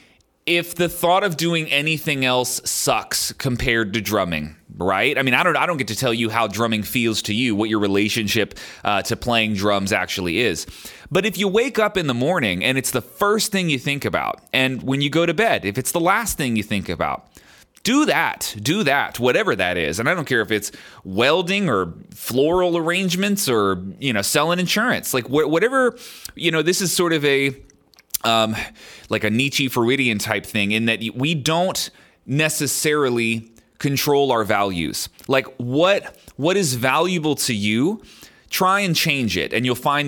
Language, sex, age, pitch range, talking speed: English, male, 30-49, 115-170 Hz, 190 wpm